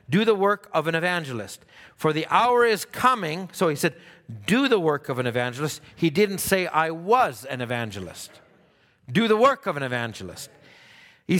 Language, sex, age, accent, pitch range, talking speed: English, male, 50-69, American, 145-200 Hz, 180 wpm